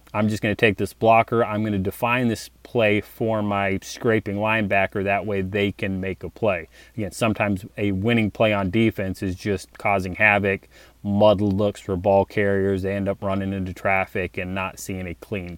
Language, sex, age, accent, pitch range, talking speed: English, male, 30-49, American, 100-115 Hz, 195 wpm